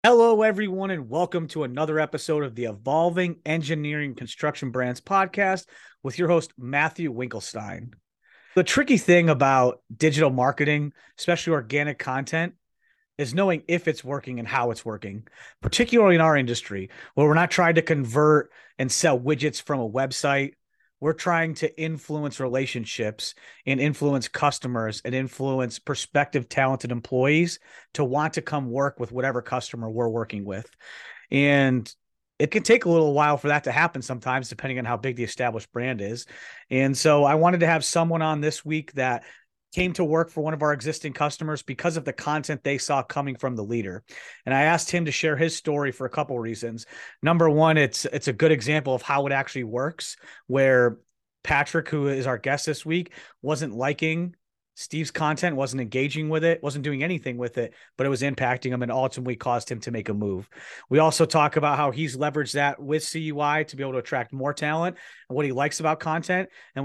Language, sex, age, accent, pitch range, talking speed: English, male, 30-49, American, 130-160 Hz, 190 wpm